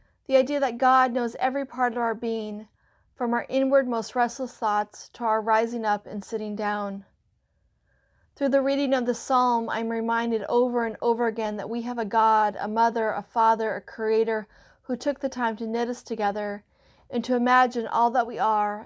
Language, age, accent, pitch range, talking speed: English, 40-59, American, 210-245 Hz, 195 wpm